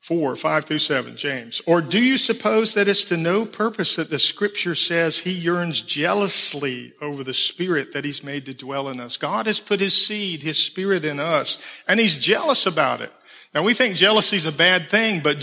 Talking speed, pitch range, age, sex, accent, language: 210 wpm, 150-210 Hz, 50-69, male, American, English